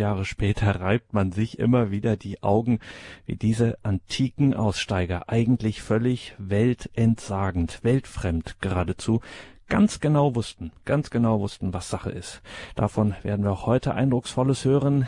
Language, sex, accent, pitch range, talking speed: German, male, German, 100-120 Hz, 130 wpm